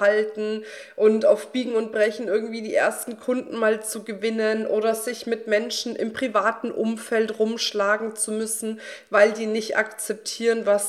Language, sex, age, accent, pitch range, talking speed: German, female, 40-59, German, 205-245 Hz, 155 wpm